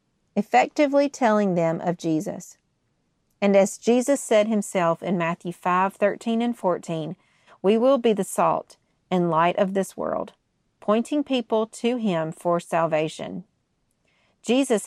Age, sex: 40-59, female